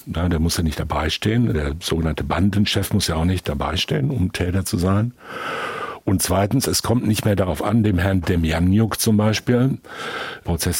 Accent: German